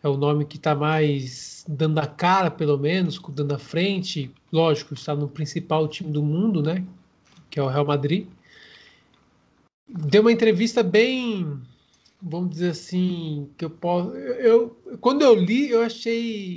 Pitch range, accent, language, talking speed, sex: 155-210 Hz, Brazilian, Portuguese, 160 wpm, male